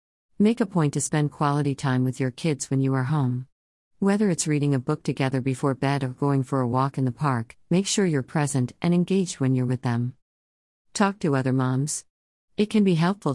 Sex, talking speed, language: female, 215 wpm, English